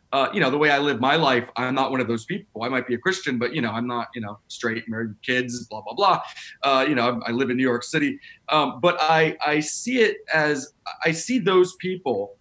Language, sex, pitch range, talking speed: English, male, 125-160 Hz, 260 wpm